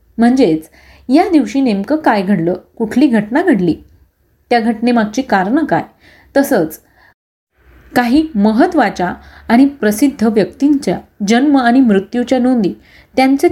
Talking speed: 105 wpm